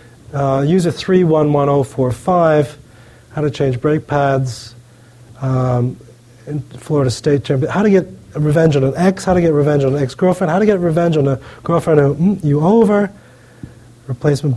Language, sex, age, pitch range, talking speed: English, male, 30-49, 125-165 Hz, 180 wpm